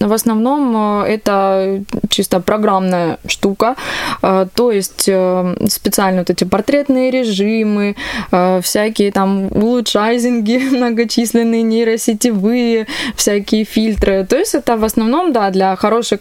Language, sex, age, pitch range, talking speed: Russian, female, 20-39, 195-225 Hz, 105 wpm